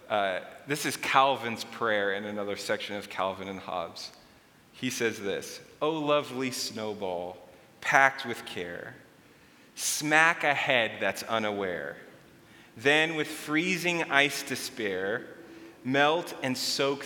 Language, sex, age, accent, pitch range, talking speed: English, male, 30-49, American, 115-150 Hz, 115 wpm